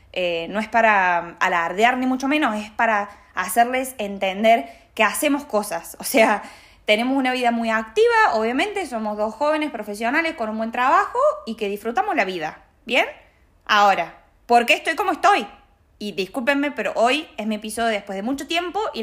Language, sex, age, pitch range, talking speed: Spanish, female, 20-39, 200-265 Hz, 175 wpm